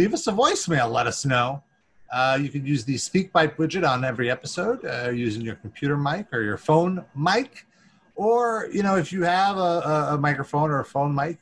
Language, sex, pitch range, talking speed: English, male, 130-205 Hz, 210 wpm